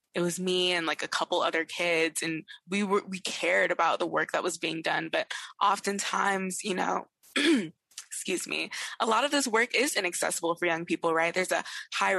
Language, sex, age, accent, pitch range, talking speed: English, female, 20-39, American, 170-205 Hz, 200 wpm